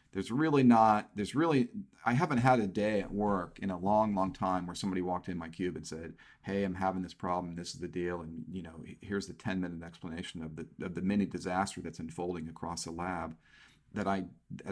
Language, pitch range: English, 90-120 Hz